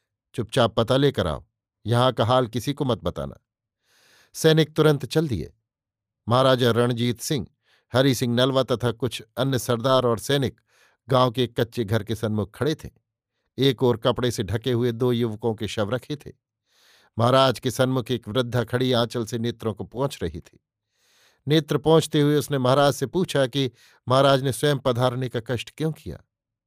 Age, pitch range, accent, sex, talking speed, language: 50-69, 115-135 Hz, native, male, 170 wpm, Hindi